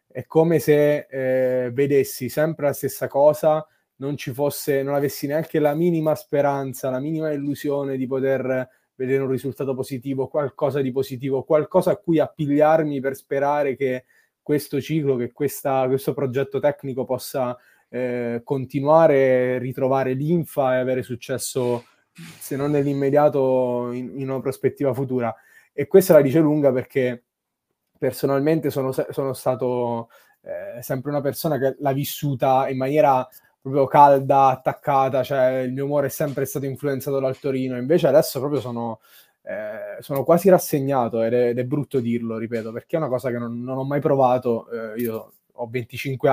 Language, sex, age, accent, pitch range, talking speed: Italian, male, 20-39, native, 125-145 Hz, 155 wpm